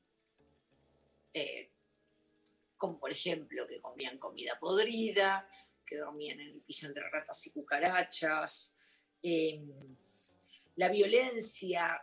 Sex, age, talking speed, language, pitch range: female, 40-59, 100 wpm, Spanish, 150-205 Hz